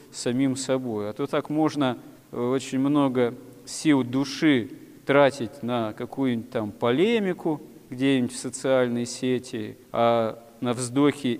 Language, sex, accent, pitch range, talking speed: Russian, male, native, 110-135 Hz, 115 wpm